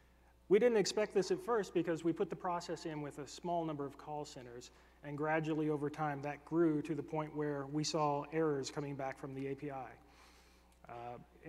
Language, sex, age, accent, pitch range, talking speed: English, male, 30-49, American, 140-170 Hz, 200 wpm